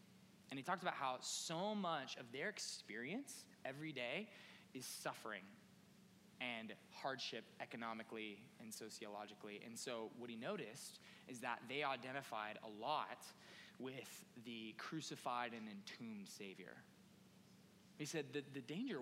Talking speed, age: 130 wpm, 20-39